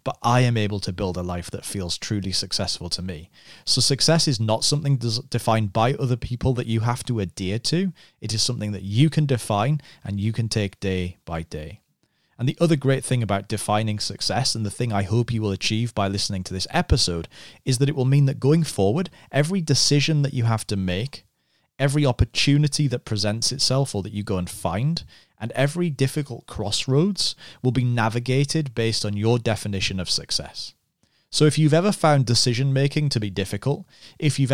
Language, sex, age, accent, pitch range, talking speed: English, male, 30-49, British, 105-140 Hz, 200 wpm